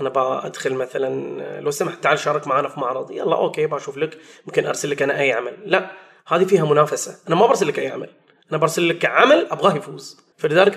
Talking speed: 200 wpm